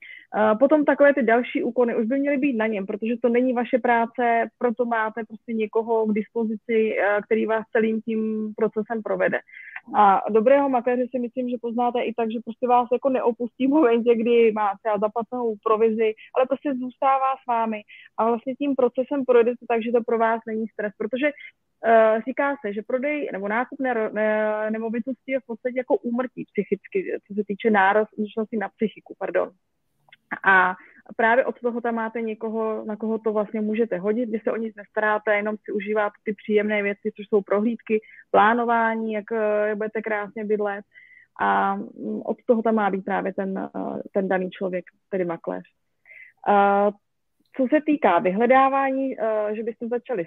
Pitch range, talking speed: 215-245 Hz, 170 wpm